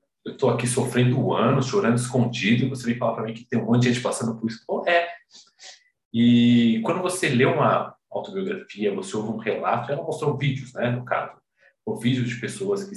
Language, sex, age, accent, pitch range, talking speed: Portuguese, male, 40-59, Brazilian, 120-185 Hz, 205 wpm